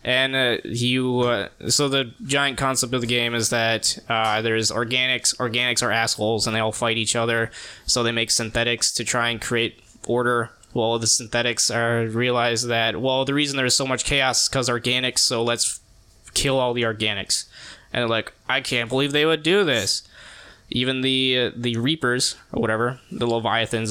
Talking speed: 190 wpm